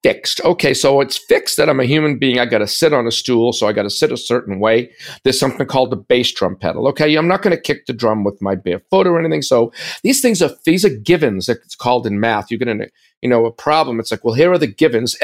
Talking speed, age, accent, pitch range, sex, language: 280 wpm, 50-69, American, 125-160 Hz, male, English